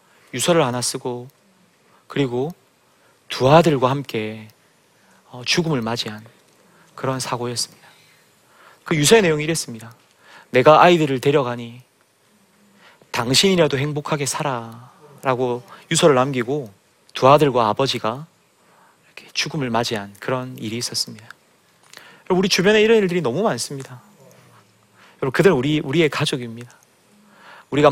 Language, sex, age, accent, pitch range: Korean, male, 30-49, native, 125-160 Hz